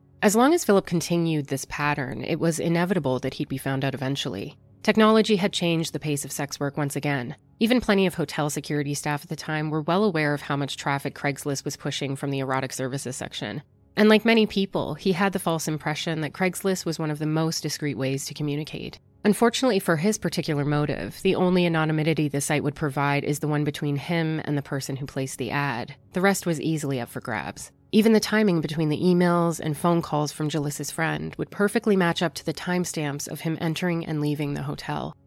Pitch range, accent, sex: 140-175 Hz, American, female